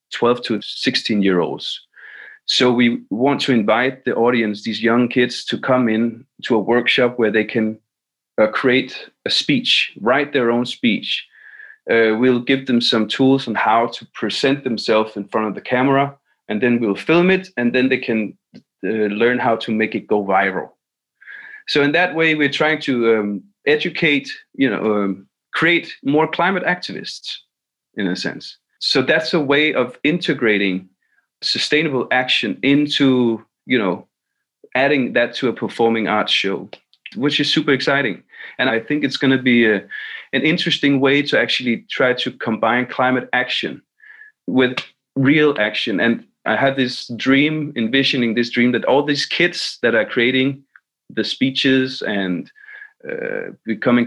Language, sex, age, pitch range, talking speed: English, male, 30-49, 115-145 Hz, 160 wpm